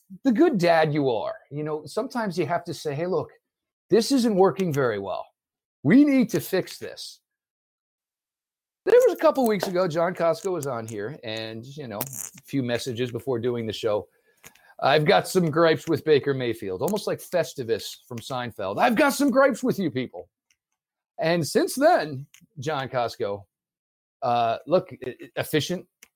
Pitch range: 115-165 Hz